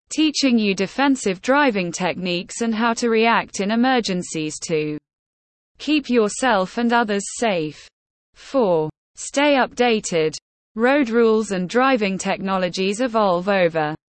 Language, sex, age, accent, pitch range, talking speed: English, female, 20-39, British, 180-245 Hz, 115 wpm